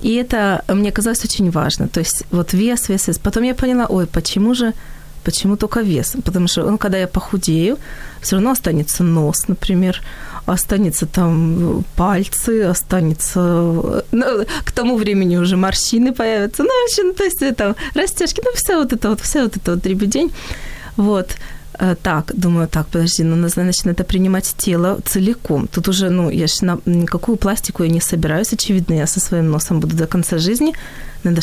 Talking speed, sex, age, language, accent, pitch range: 175 wpm, female, 20-39, Ukrainian, native, 175-220 Hz